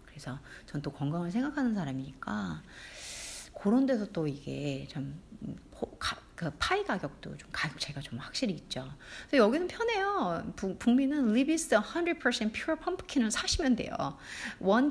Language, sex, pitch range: Korean, female, 160-260 Hz